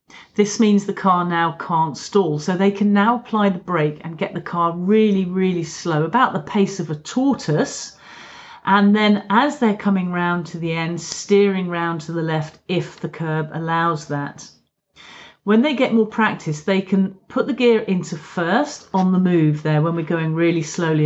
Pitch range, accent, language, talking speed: 160-205 Hz, British, English, 190 wpm